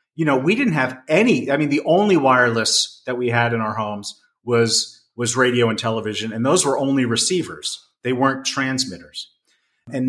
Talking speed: 185 wpm